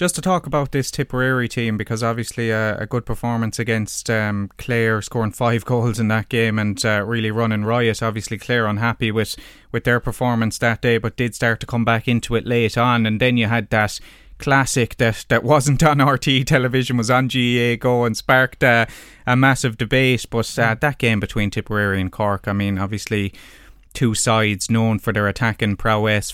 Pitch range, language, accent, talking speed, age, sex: 105-125 Hz, English, Irish, 195 wpm, 20-39, male